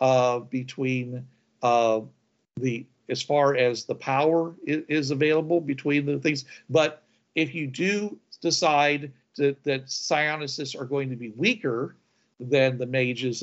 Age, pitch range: 50-69, 125-150 Hz